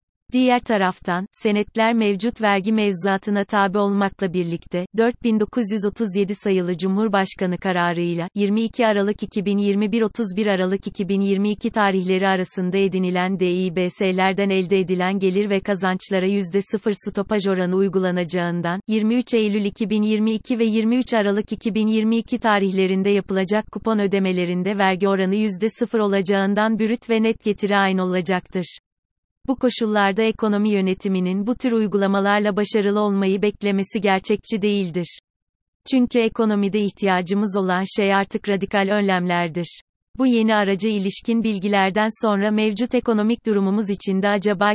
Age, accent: 30-49, native